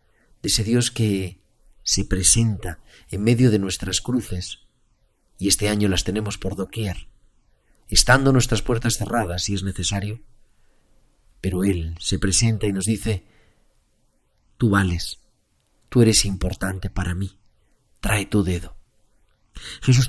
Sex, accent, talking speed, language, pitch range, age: male, Spanish, 130 wpm, Spanish, 95-110 Hz, 40-59